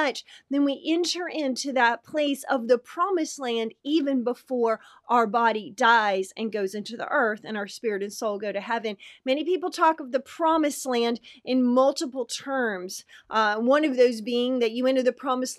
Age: 30-49